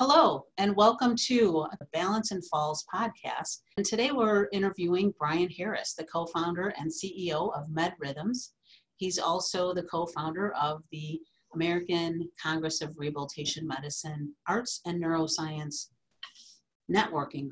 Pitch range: 155-200 Hz